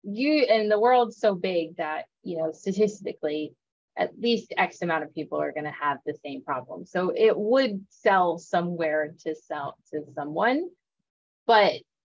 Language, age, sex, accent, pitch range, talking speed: English, 20-39, female, American, 160-205 Hz, 165 wpm